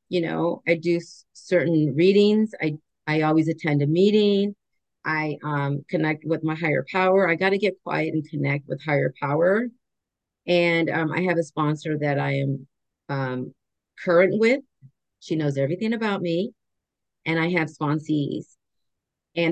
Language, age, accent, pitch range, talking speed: English, 40-59, American, 150-180 Hz, 155 wpm